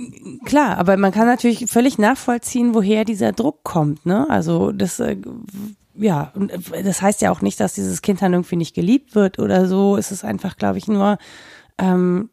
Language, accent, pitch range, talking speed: German, German, 175-215 Hz, 180 wpm